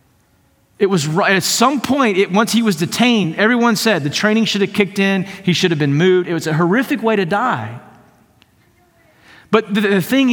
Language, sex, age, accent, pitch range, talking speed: English, male, 40-59, American, 175-240 Hz, 200 wpm